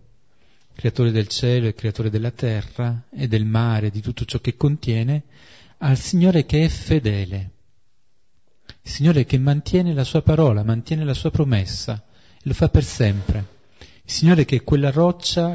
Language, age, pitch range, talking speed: Italian, 40-59, 105-145 Hz, 165 wpm